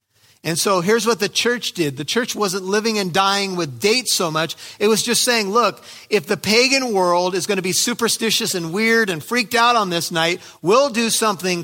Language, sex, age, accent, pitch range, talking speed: English, male, 50-69, American, 160-215 Hz, 215 wpm